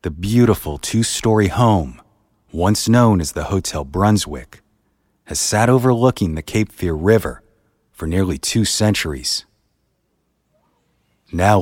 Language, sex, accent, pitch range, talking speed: English, male, American, 75-105 Hz, 115 wpm